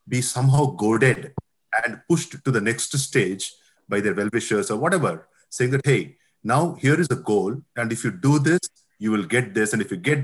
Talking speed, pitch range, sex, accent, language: 205 wpm, 115-150 Hz, male, Indian, English